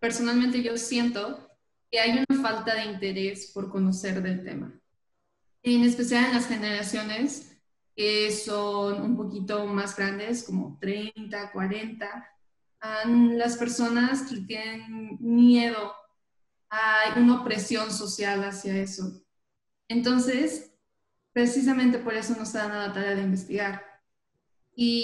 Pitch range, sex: 205-235 Hz, female